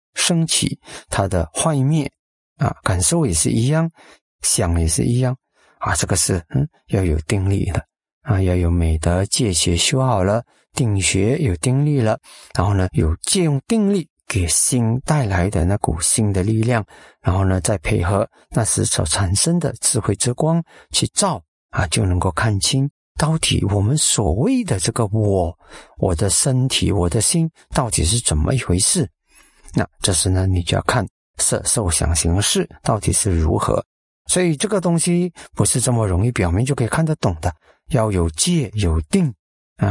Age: 50-69